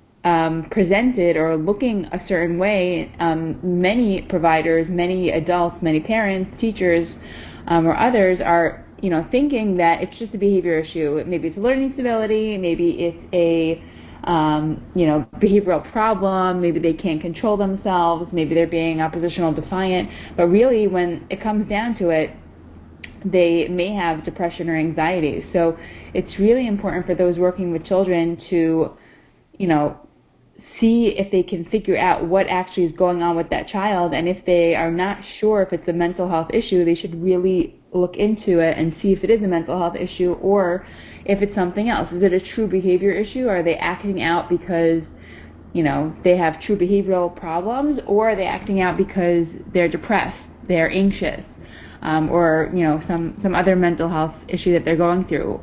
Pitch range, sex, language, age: 165-195 Hz, female, English, 20-39